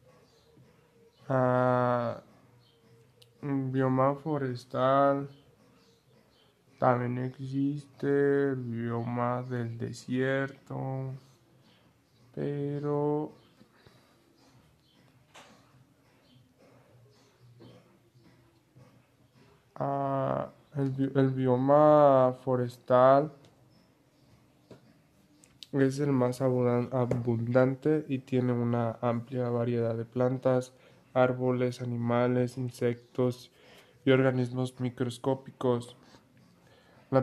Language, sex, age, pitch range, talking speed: Spanish, male, 20-39, 125-135 Hz, 50 wpm